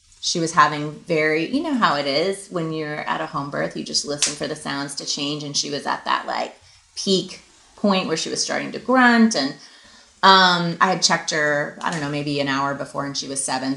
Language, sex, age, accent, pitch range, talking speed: English, female, 30-49, American, 155-215 Hz, 235 wpm